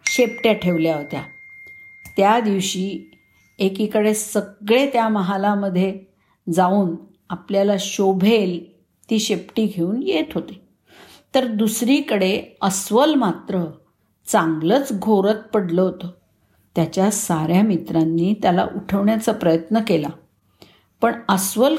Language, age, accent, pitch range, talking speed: Marathi, 50-69, native, 175-220 Hz, 95 wpm